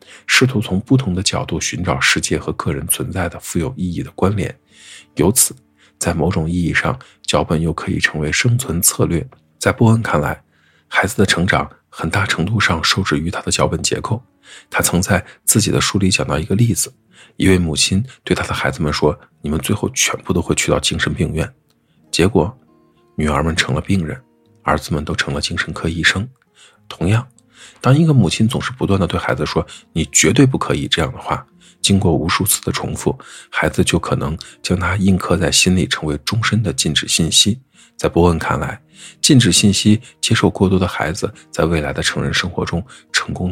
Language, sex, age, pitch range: Chinese, male, 50-69, 85-115 Hz